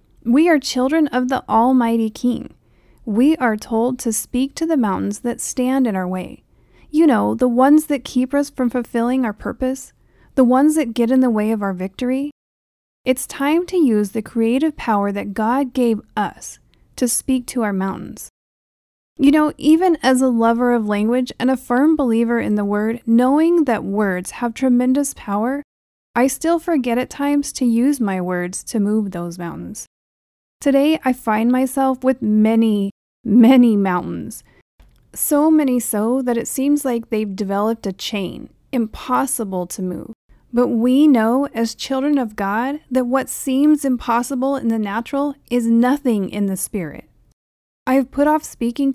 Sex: female